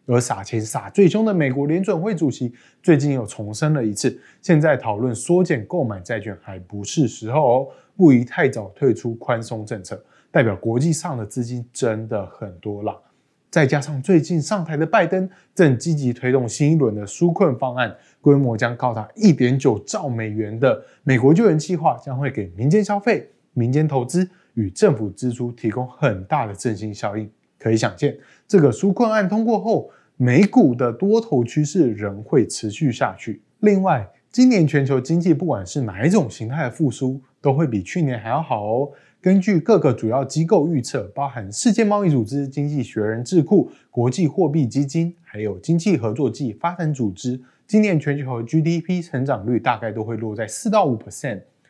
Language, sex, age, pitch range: Chinese, male, 20-39, 115-170 Hz